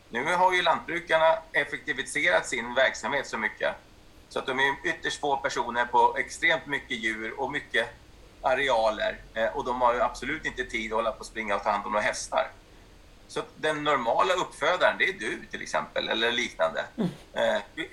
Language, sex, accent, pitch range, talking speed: Swedish, male, native, 115-160 Hz, 185 wpm